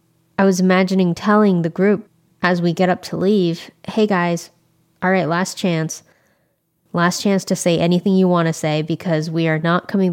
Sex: female